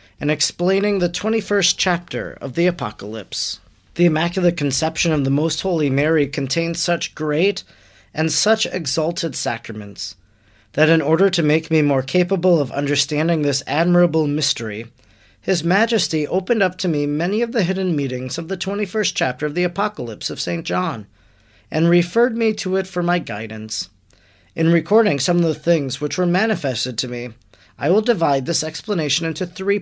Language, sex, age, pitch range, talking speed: English, male, 40-59, 125-180 Hz, 165 wpm